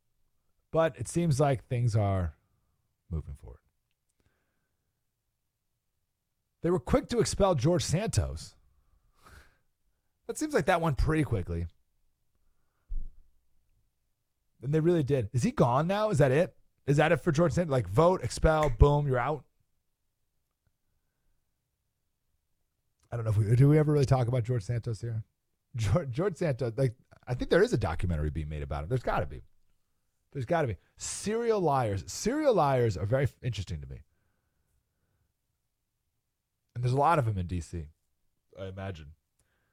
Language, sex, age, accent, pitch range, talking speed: English, male, 40-59, American, 95-150 Hz, 150 wpm